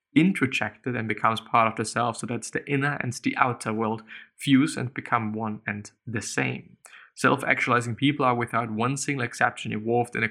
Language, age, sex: English, 20-39, male